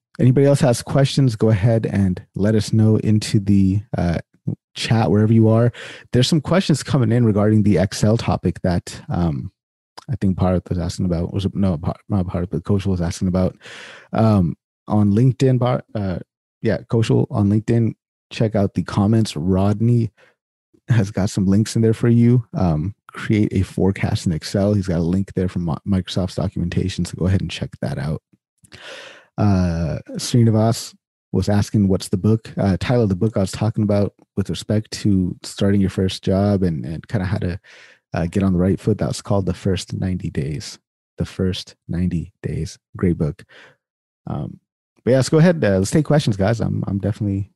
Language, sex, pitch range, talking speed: English, male, 95-115 Hz, 190 wpm